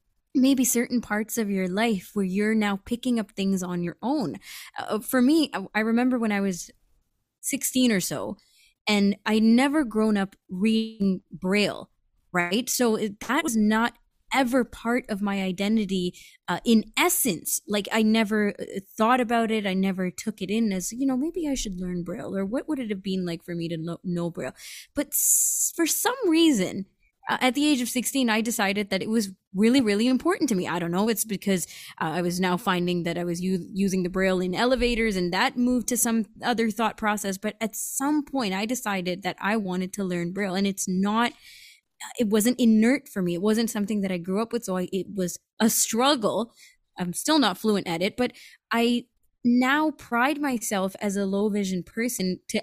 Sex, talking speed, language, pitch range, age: female, 205 wpm, English, 190-240 Hz, 20-39